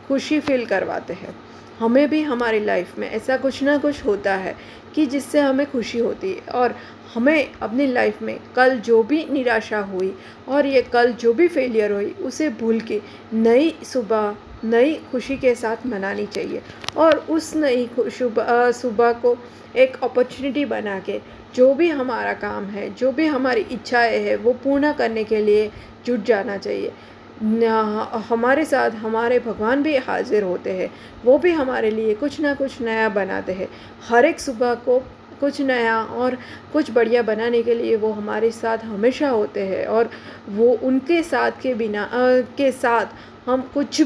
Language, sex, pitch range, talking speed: Hindi, female, 225-275 Hz, 170 wpm